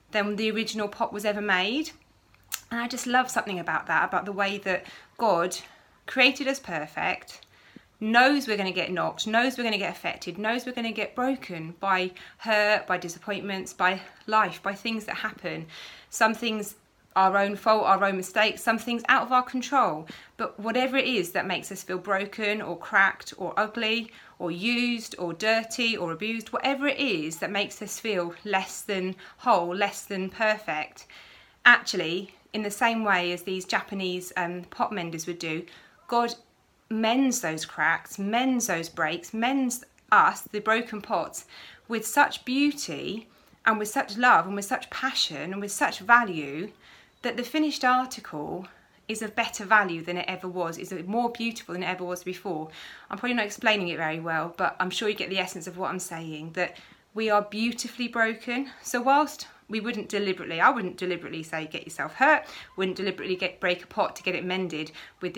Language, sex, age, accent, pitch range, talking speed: English, female, 30-49, British, 180-230 Hz, 185 wpm